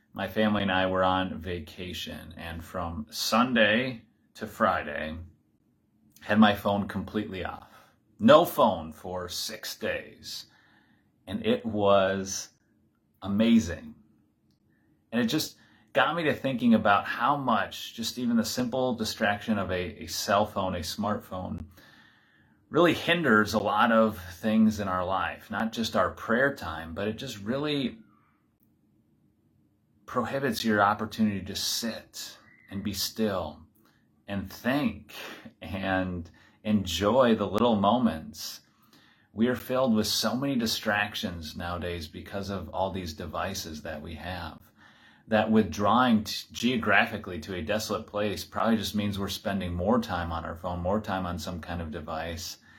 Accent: American